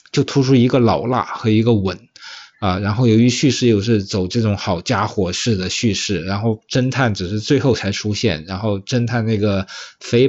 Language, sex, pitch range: Chinese, male, 100-125 Hz